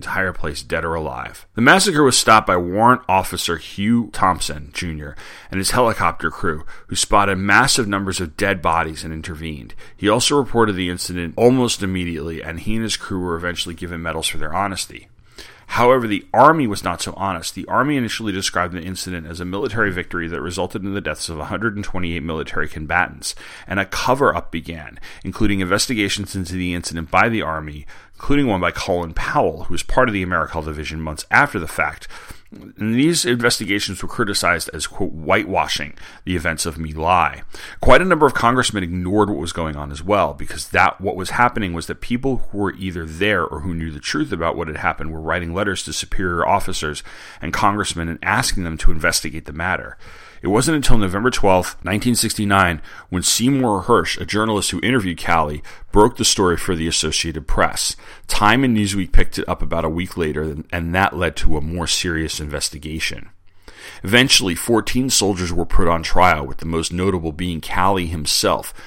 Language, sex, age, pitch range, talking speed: English, male, 30-49, 80-100 Hz, 185 wpm